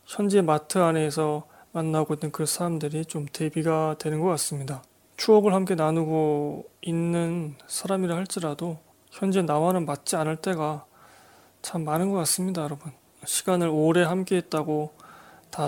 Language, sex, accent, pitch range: Korean, male, native, 155-185 Hz